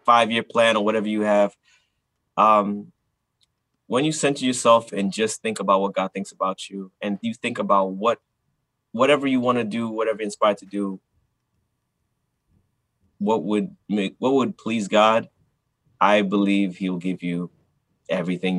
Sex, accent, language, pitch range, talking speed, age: male, American, English, 95-125 Hz, 160 wpm, 20-39